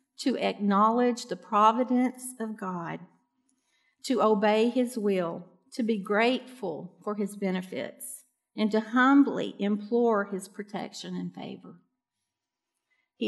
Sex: female